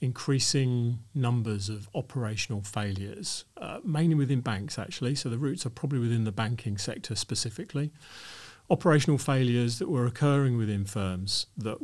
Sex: male